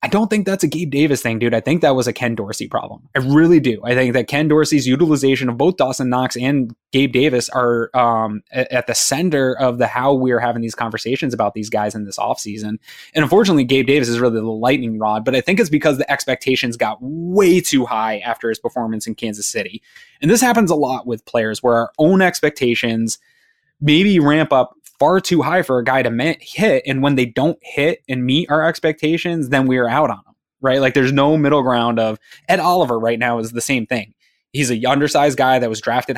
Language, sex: English, male